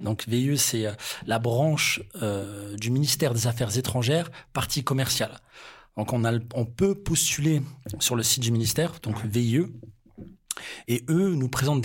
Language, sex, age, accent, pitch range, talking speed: French, male, 40-59, French, 115-145 Hz, 155 wpm